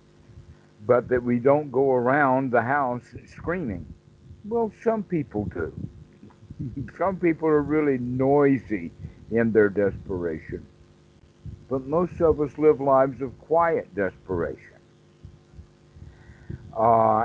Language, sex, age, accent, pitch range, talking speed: English, male, 60-79, American, 105-140 Hz, 110 wpm